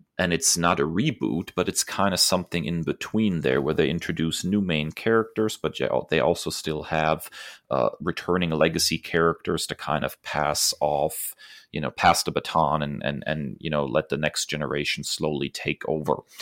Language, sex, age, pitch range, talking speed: English, male, 30-49, 75-90 Hz, 185 wpm